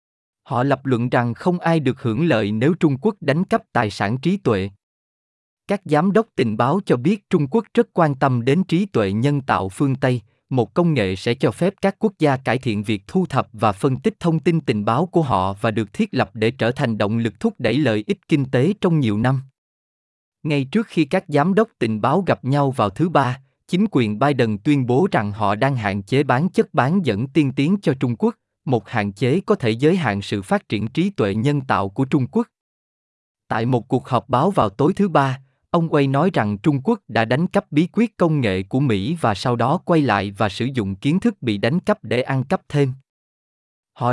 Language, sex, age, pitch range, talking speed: Vietnamese, male, 20-39, 115-165 Hz, 230 wpm